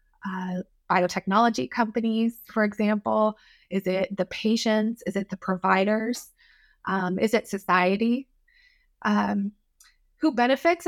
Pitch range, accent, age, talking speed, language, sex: 205-260 Hz, American, 20-39, 110 wpm, English, female